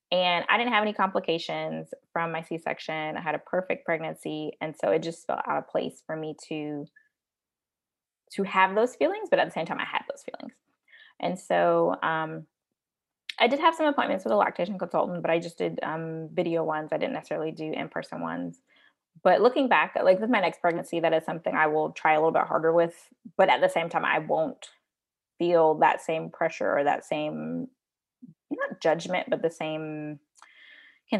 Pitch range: 160-230 Hz